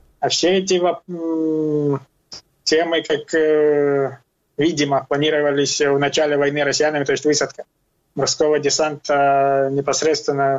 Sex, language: male, Ukrainian